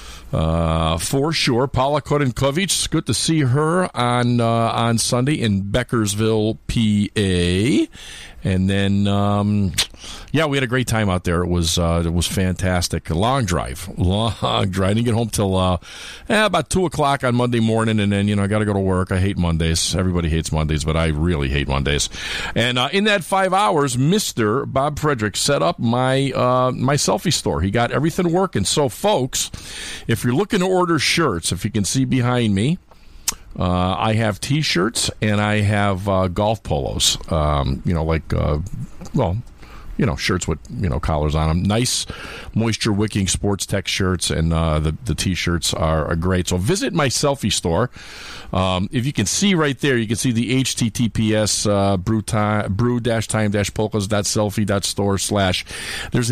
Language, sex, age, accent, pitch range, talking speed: English, male, 50-69, American, 90-125 Hz, 180 wpm